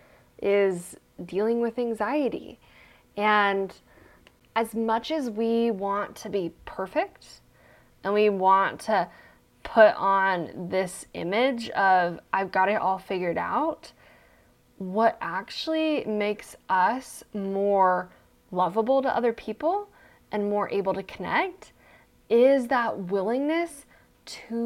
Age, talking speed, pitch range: 10-29, 110 wpm, 200-250 Hz